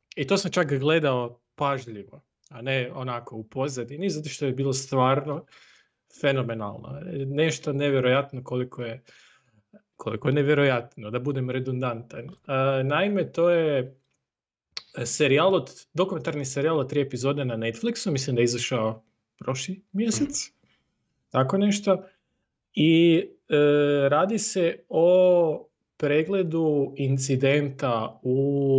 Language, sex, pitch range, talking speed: Croatian, male, 125-170 Hz, 105 wpm